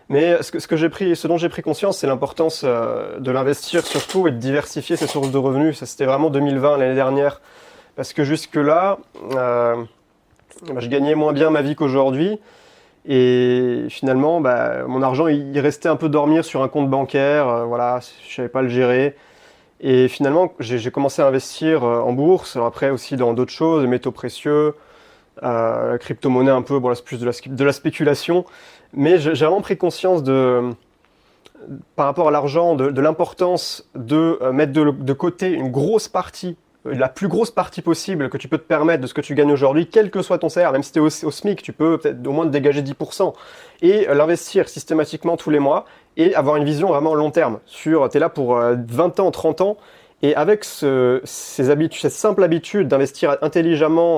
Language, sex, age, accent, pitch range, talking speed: French, male, 30-49, French, 135-165 Hz, 205 wpm